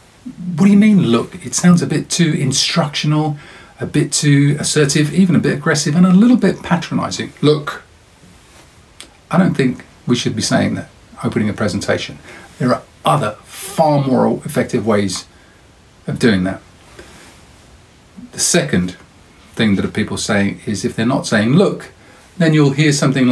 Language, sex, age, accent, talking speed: English, male, 50-69, British, 160 wpm